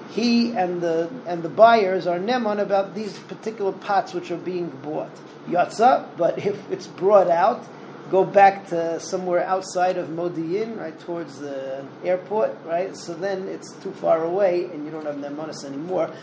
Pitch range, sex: 155-195 Hz, male